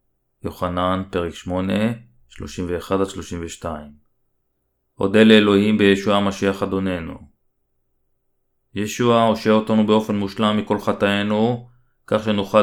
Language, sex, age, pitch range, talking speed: Hebrew, male, 30-49, 95-110 Hz, 80 wpm